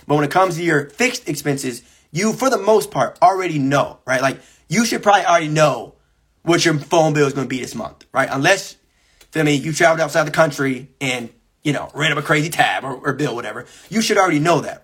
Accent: American